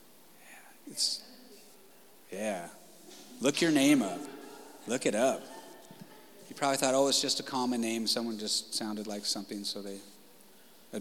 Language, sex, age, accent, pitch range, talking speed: English, male, 30-49, American, 95-125 Hz, 140 wpm